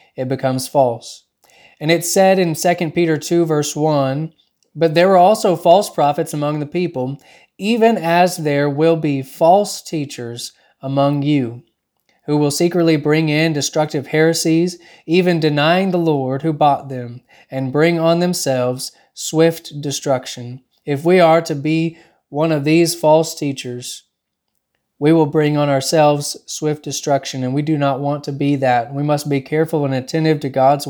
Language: English